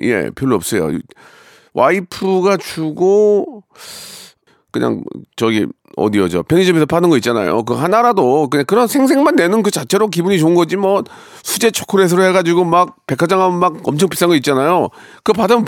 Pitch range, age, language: 130-180 Hz, 40-59, Korean